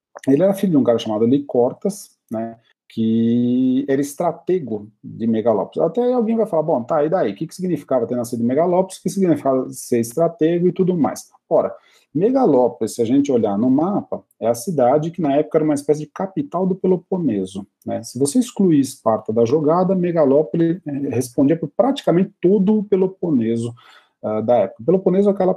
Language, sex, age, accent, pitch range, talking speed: Portuguese, male, 40-59, Brazilian, 115-185 Hz, 180 wpm